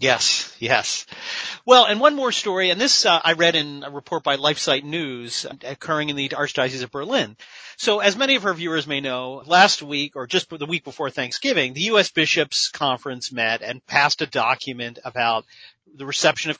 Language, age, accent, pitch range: English, 40-59, American, 130-165 Hz